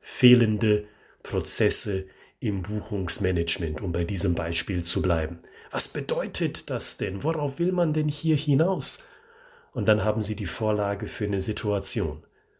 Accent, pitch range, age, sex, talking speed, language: German, 100-135 Hz, 40-59, male, 140 wpm, German